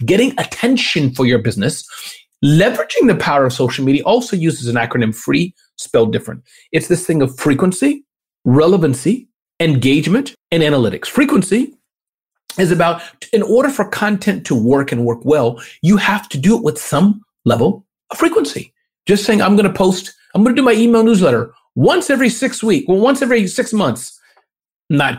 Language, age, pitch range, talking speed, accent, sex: English, 40-59, 145-235 Hz, 170 wpm, American, male